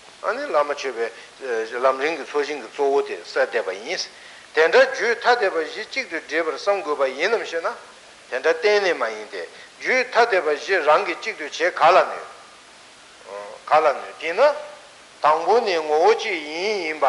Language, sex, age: Italian, male, 60-79